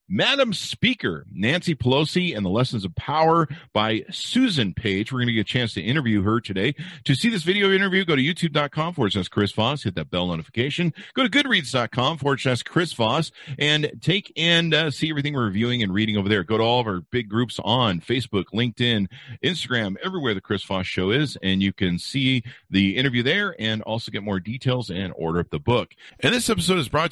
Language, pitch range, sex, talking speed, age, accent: English, 110-155 Hz, male, 210 wpm, 50-69, American